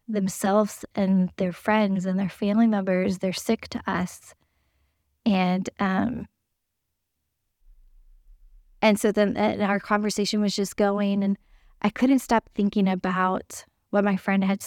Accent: American